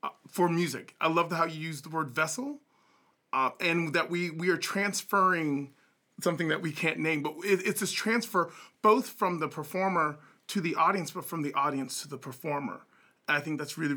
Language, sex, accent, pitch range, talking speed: English, male, American, 155-210 Hz, 200 wpm